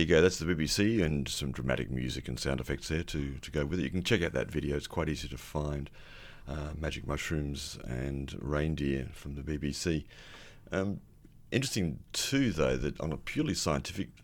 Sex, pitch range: male, 65-80 Hz